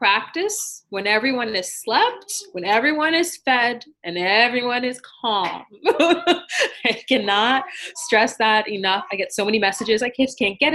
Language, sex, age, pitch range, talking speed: English, female, 20-39, 185-265 Hz, 150 wpm